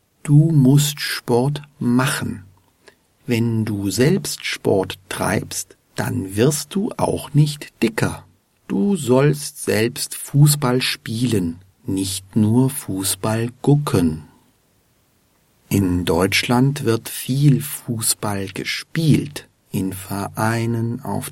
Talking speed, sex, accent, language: 95 wpm, male, German, German